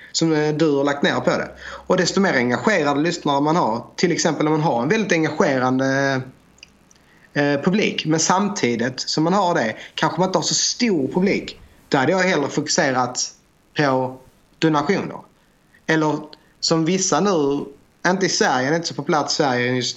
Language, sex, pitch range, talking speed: Swedish, male, 135-165 Hz, 170 wpm